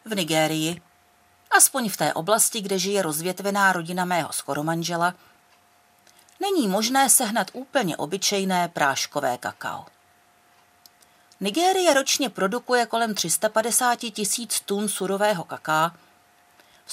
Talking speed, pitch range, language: 105 wpm, 160-235 Hz, Czech